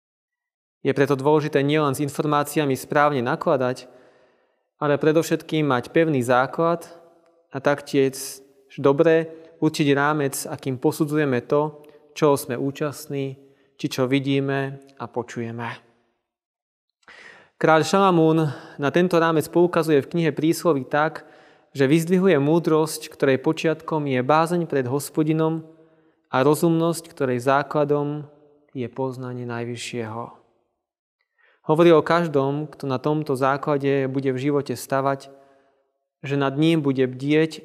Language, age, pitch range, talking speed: Slovak, 20-39, 135-160 Hz, 115 wpm